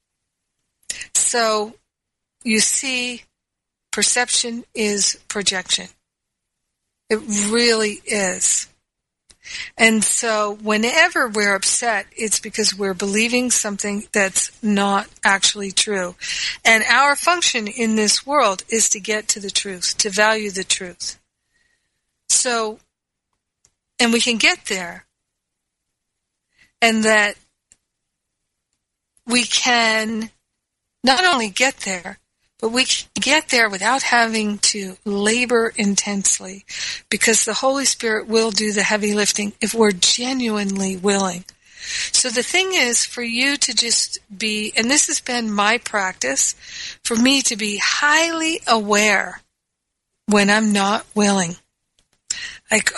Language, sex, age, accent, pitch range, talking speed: English, female, 50-69, American, 205-245 Hz, 115 wpm